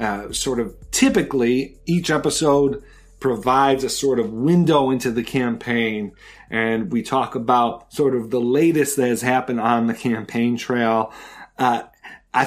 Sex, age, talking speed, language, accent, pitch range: male, 40-59, 150 wpm, English, American, 115-140 Hz